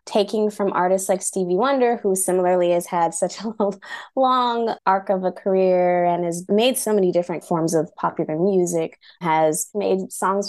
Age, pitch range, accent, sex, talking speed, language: 20-39, 170-210 Hz, American, female, 170 wpm, English